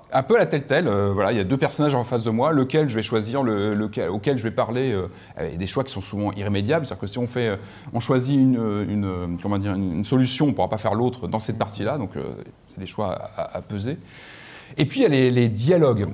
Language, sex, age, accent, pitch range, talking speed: French, male, 30-49, French, 105-145 Hz, 265 wpm